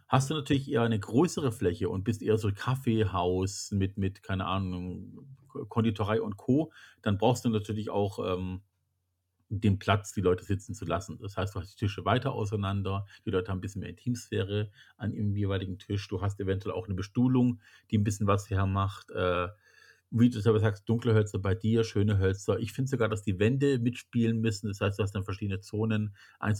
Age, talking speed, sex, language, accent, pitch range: 40-59, 205 wpm, male, German, German, 95-115 Hz